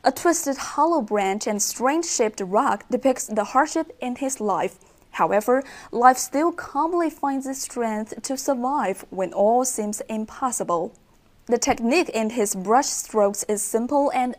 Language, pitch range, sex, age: Chinese, 205-265 Hz, female, 20-39